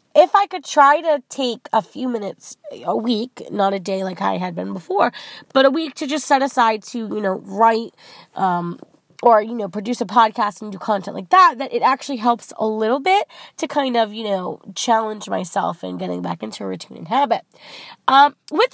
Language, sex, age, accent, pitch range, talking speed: English, female, 20-39, American, 200-270 Hz, 210 wpm